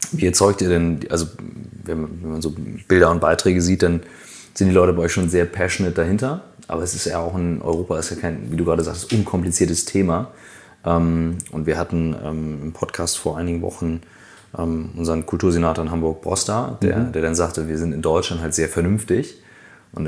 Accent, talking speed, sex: German, 190 wpm, male